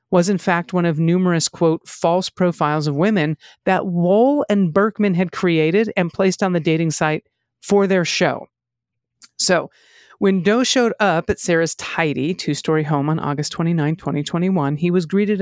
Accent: American